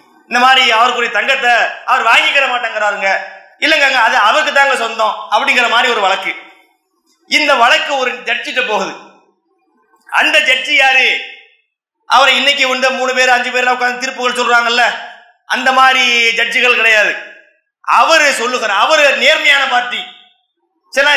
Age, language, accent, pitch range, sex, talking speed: 30-49, English, Indian, 230-280 Hz, male, 115 wpm